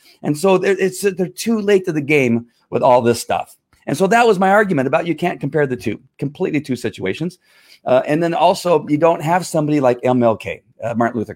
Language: English